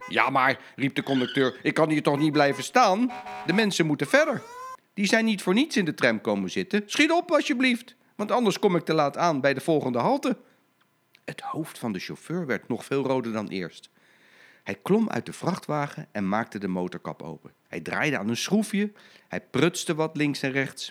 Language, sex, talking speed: Dutch, male, 205 wpm